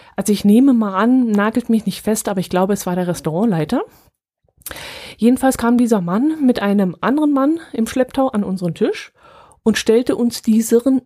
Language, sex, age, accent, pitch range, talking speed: German, female, 30-49, German, 190-230 Hz, 180 wpm